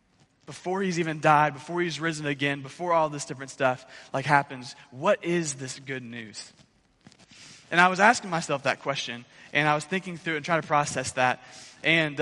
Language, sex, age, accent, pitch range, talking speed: English, male, 20-39, American, 125-165 Hz, 190 wpm